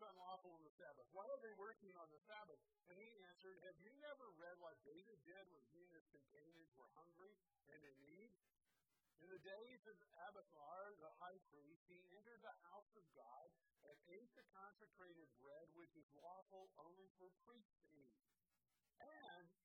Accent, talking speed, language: American, 180 wpm, English